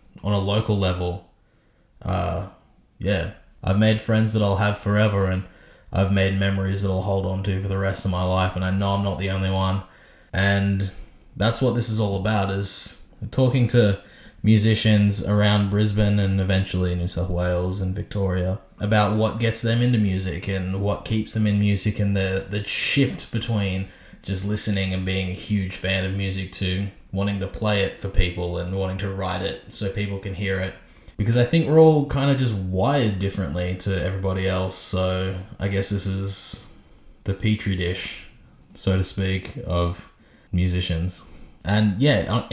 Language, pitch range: English, 95-105 Hz